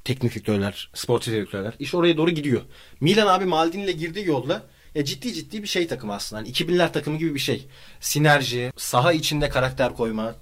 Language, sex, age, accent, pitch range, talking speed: Turkish, male, 30-49, native, 115-165 Hz, 180 wpm